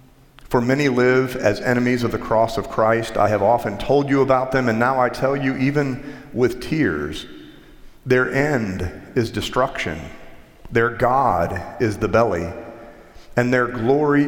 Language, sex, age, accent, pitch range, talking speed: English, male, 40-59, American, 105-130 Hz, 155 wpm